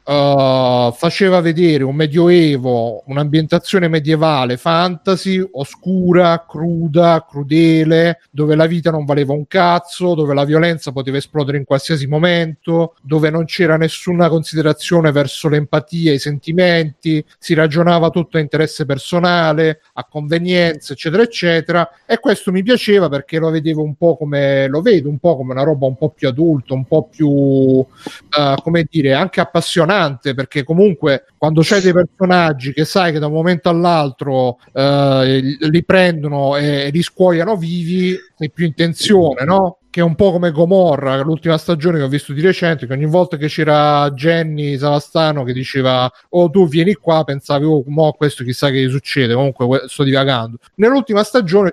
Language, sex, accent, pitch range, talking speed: Italian, male, native, 145-175 Hz, 155 wpm